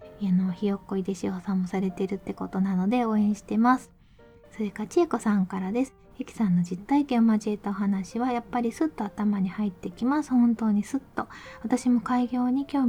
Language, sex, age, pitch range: Japanese, female, 20-39, 195-245 Hz